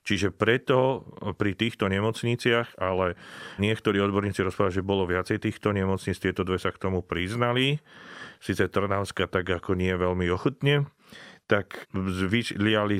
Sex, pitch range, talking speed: male, 95-110 Hz, 140 wpm